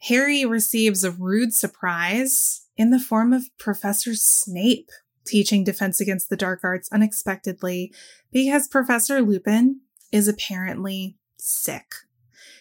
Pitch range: 190-230 Hz